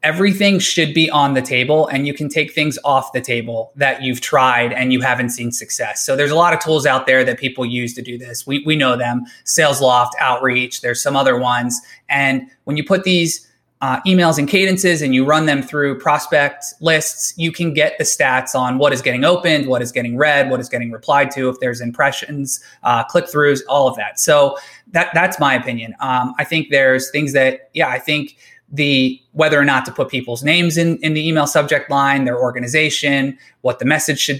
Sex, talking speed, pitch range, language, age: male, 215 wpm, 130-155 Hz, English, 20-39